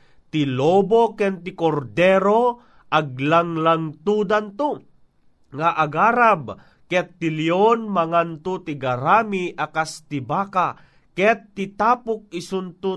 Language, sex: Filipino, male